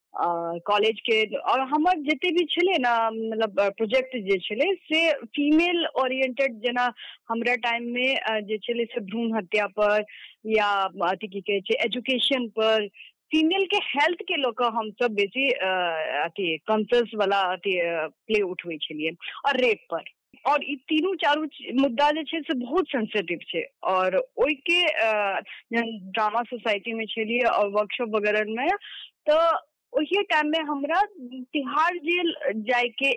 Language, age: Hindi, 20-39